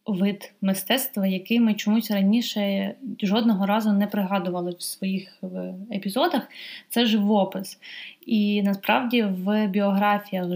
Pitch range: 190-215 Hz